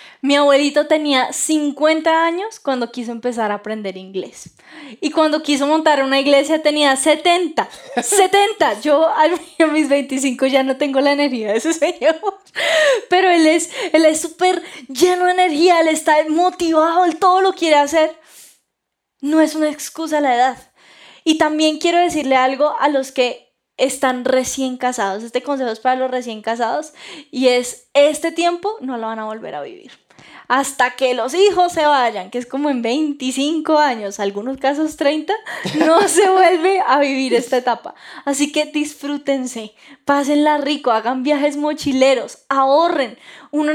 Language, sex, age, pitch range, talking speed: Spanish, female, 10-29, 265-325 Hz, 160 wpm